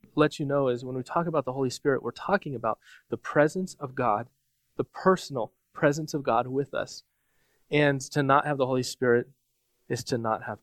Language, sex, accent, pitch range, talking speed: English, male, American, 130-155 Hz, 205 wpm